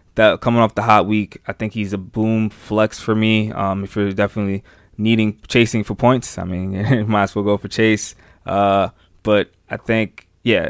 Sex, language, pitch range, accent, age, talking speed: male, English, 95-110 Hz, American, 20-39, 195 wpm